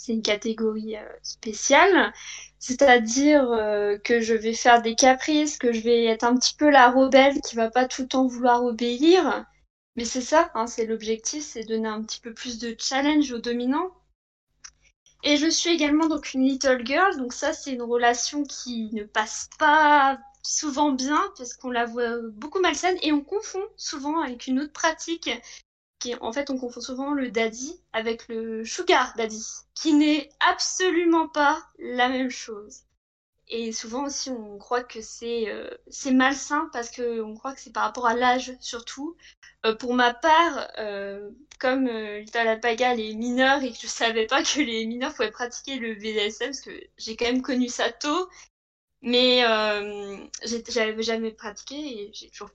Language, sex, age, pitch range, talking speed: French, female, 20-39, 230-295 Hz, 180 wpm